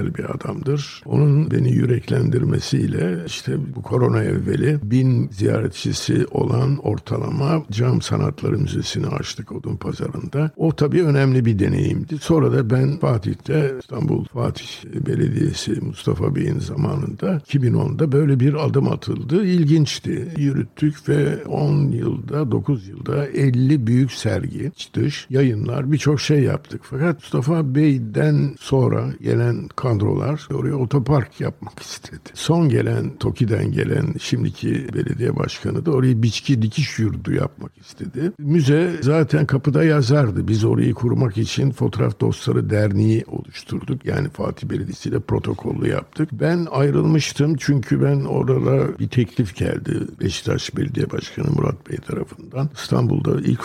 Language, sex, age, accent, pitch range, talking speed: Turkish, male, 60-79, native, 125-150 Hz, 125 wpm